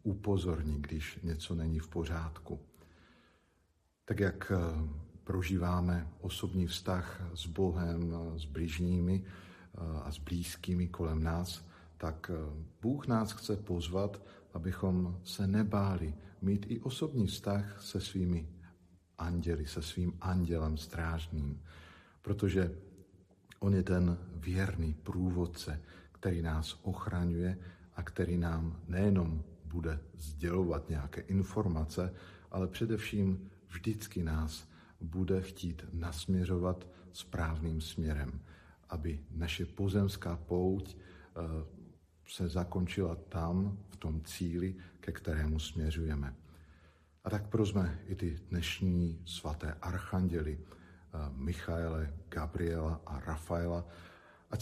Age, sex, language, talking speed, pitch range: 50-69, male, Slovak, 100 wpm, 80-95 Hz